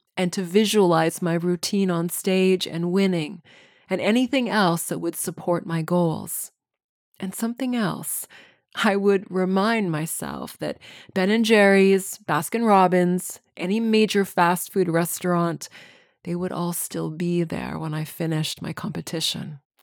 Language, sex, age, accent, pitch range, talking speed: English, female, 20-39, American, 165-190 Hz, 135 wpm